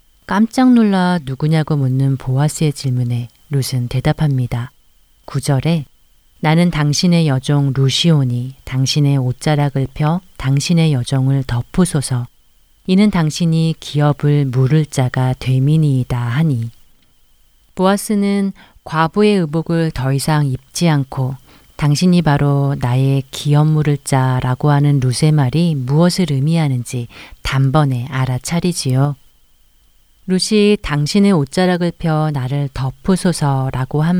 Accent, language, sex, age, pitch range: native, Korean, female, 40-59, 130-160 Hz